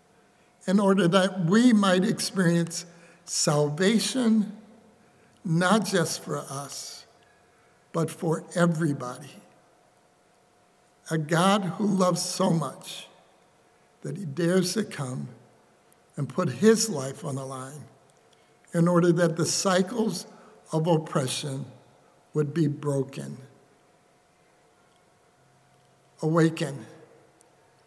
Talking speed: 95 wpm